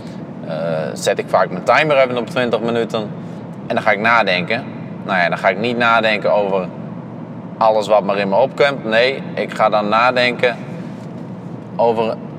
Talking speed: 170 wpm